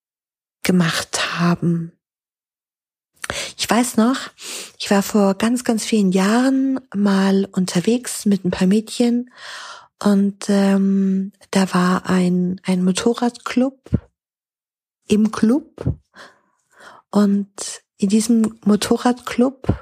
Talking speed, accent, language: 95 wpm, German, German